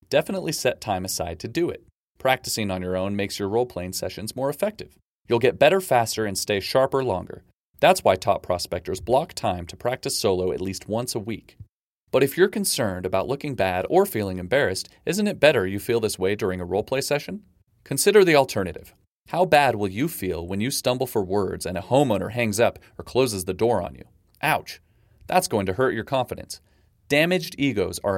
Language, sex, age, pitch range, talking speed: English, male, 30-49, 95-140 Hz, 200 wpm